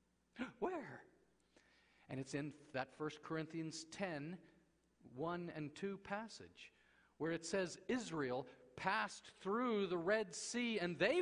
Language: English